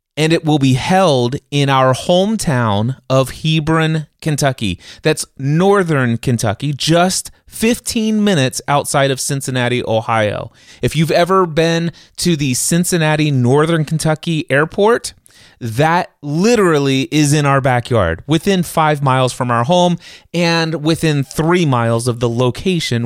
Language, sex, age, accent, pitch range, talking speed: English, male, 30-49, American, 120-165 Hz, 130 wpm